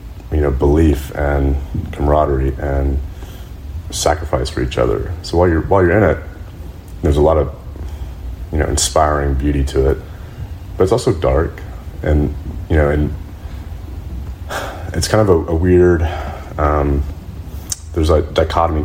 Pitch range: 70-85 Hz